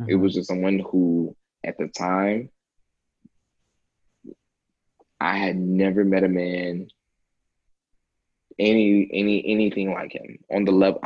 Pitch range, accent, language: 90-105 Hz, American, English